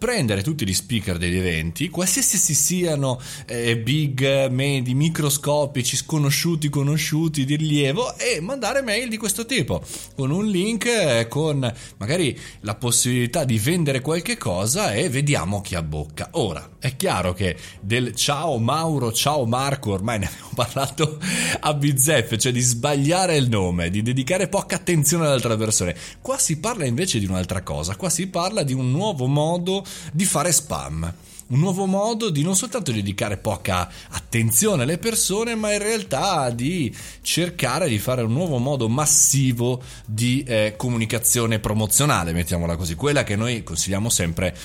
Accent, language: native, Italian